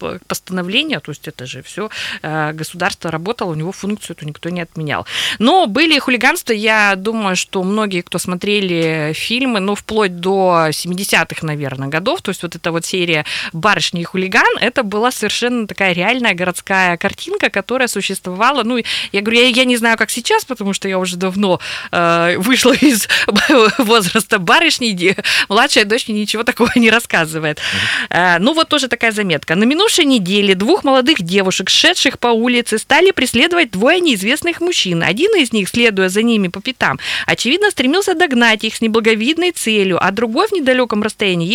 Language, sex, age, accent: Russian, female, 20-39, native